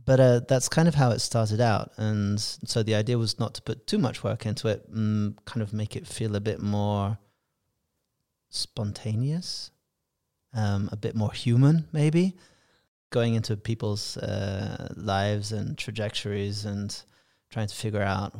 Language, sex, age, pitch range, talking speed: English, male, 30-49, 105-130 Hz, 165 wpm